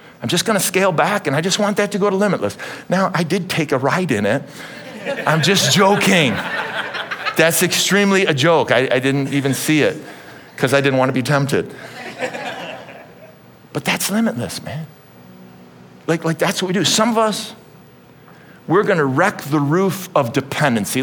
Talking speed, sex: 175 wpm, male